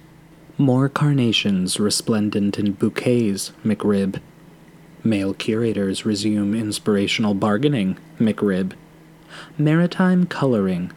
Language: Danish